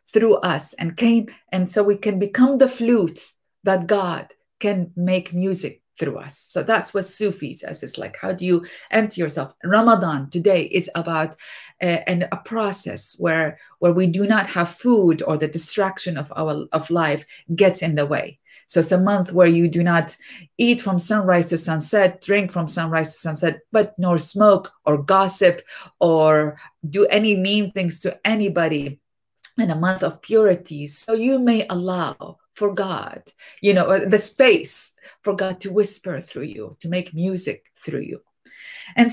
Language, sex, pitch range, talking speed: English, female, 165-205 Hz, 170 wpm